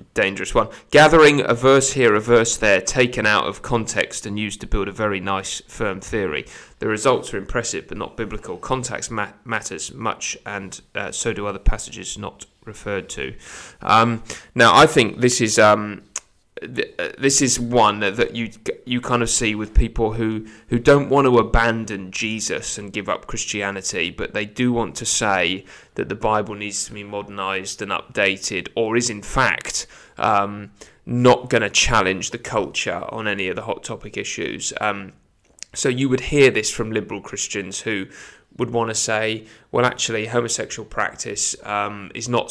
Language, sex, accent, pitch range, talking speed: English, male, British, 105-120 Hz, 175 wpm